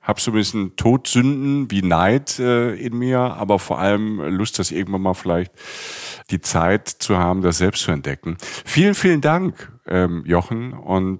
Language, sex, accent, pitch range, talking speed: German, male, German, 85-105 Hz, 175 wpm